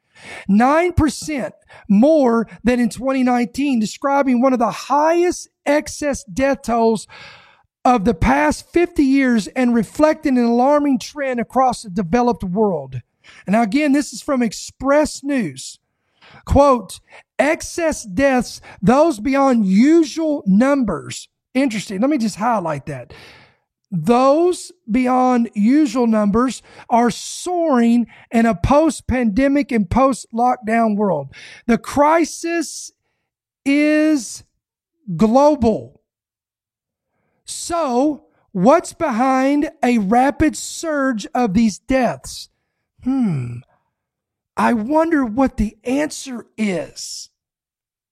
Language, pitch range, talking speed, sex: English, 225-285 Hz, 100 wpm, male